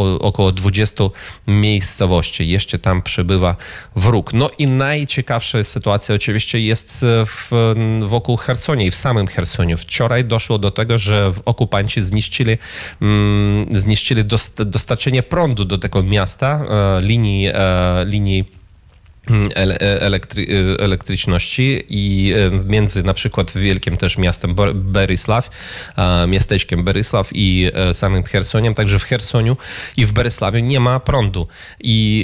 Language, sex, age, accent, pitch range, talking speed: Polish, male, 30-49, native, 95-115 Hz, 125 wpm